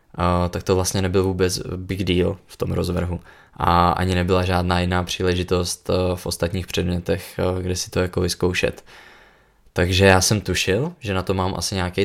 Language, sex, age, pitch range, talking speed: Czech, male, 20-39, 90-95 Hz, 175 wpm